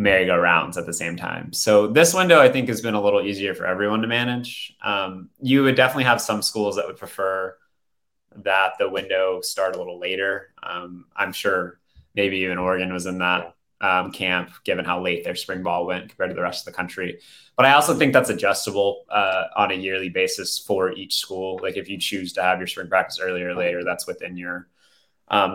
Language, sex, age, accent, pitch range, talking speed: English, male, 20-39, American, 95-115 Hz, 215 wpm